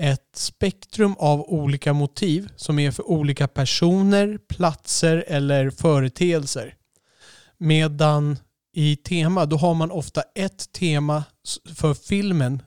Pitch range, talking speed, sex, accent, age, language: 135-160 Hz, 115 wpm, male, native, 30-49, Swedish